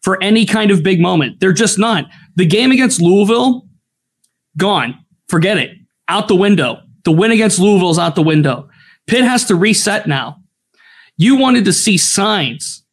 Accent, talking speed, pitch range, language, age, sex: American, 170 wpm, 155-205 Hz, English, 20-39, male